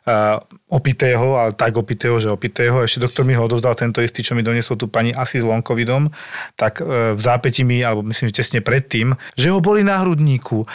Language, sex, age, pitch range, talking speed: Slovak, male, 40-59, 120-160 Hz, 205 wpm